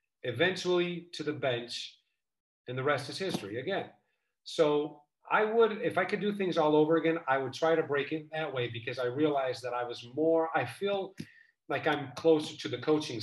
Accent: American